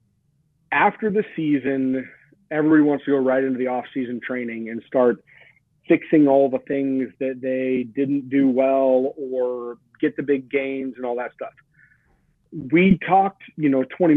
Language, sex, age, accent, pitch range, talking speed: English, male, 40-59, American, 130-160 Hz, 160 wpm